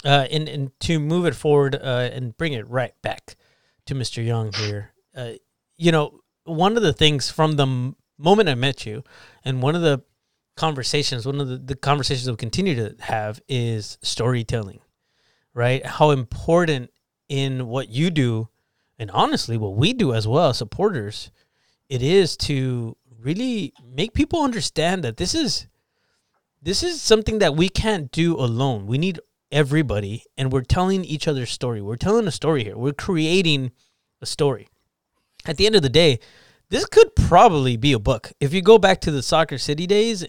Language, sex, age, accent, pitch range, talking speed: English, male, 30-49, American, 120-160 Hz, 175 wpm